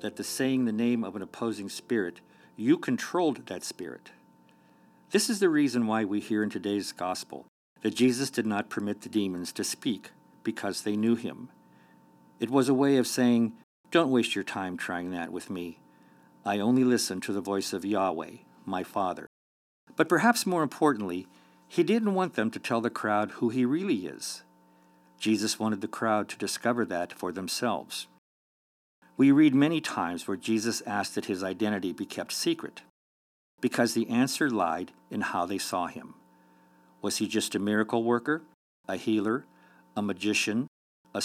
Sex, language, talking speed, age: male, English, 170 wpm, 50-69